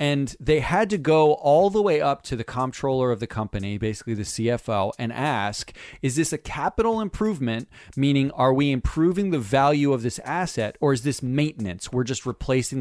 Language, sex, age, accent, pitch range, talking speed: English, male, 40-59, American, 120-180 Hz, 190 wpm